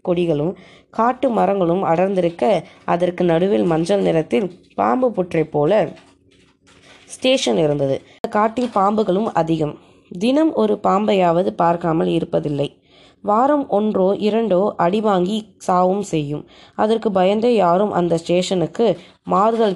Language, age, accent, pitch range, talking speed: Tamil, 20-39, native, 165-220 Hz, 95 wpm